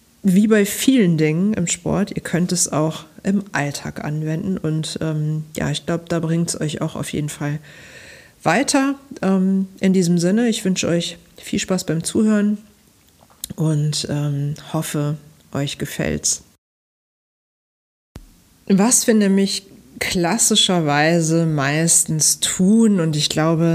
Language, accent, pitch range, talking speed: German, German, 155-190 Hz, 130 wpm